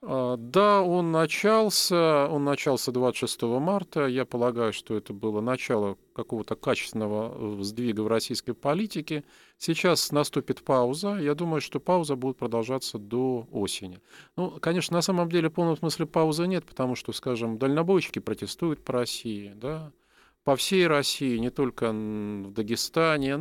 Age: 40-59